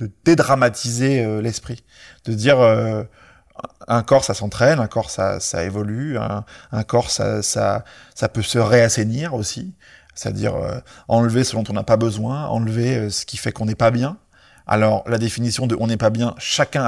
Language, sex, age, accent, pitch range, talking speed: French, male, 30-49, French, 110-130 Hz, 195 wpm